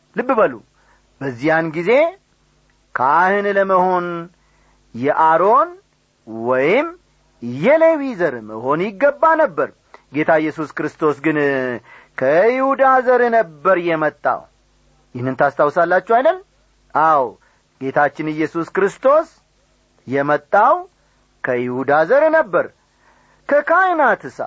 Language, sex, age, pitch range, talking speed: Amharic, male, 40-59, 160-265 Hz, 80 wpm